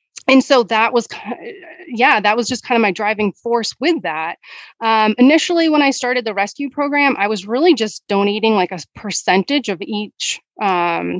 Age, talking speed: 30-49, 180 wpm